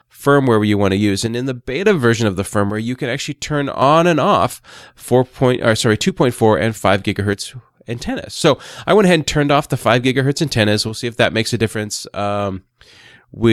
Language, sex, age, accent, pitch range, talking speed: English, male, 20-39, American, 105-135 Hz, 225 wpm